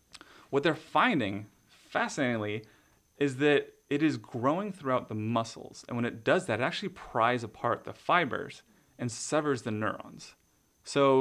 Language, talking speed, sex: English, 150 wpm, male